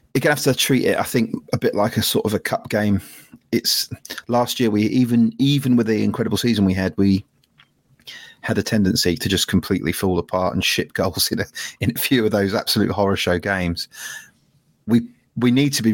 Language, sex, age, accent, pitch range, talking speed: English, male, 30-49, British, 95-110 Hz, 210 wpm